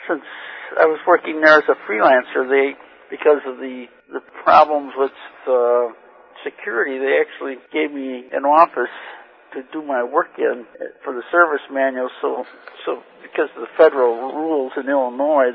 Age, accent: 60-79, American